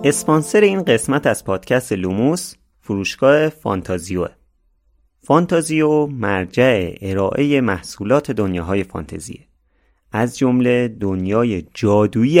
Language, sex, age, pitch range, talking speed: Persian, male, 30-49, 90-140 Hz, 85 wpm